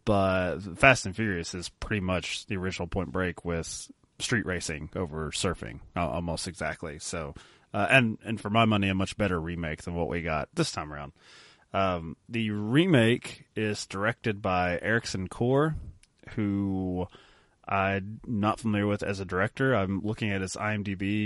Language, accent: English, American